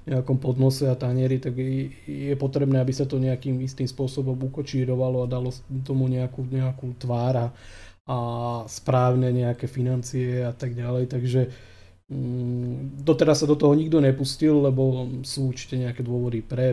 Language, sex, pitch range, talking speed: Slovak, male, 125-130 Hz, 145 wpm